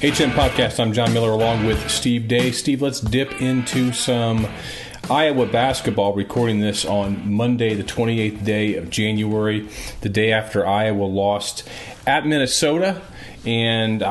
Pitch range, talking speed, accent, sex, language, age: 105-125 Hz, 140 wpm, American, male, English, 40-59